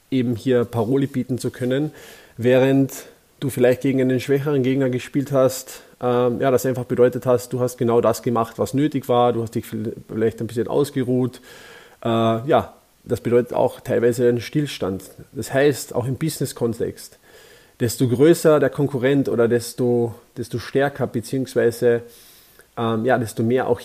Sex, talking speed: male, 160 wpm